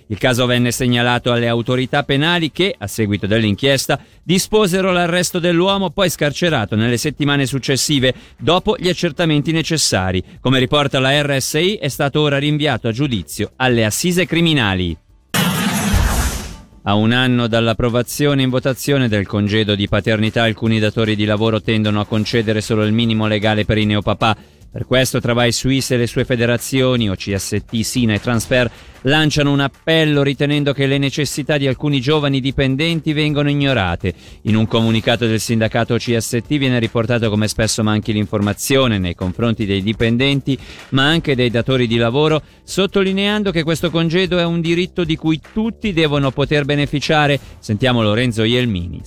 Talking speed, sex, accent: 150 wpm, male, native